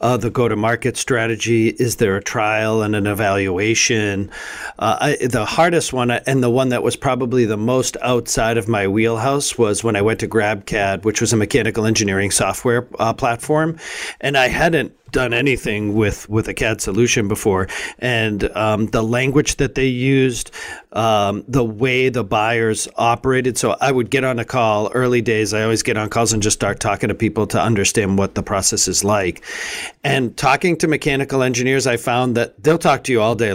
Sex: male